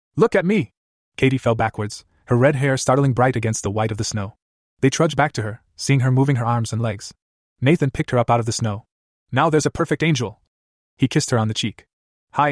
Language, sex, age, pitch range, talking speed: English, male, 20-39, 110-145 Hz, 235 wpm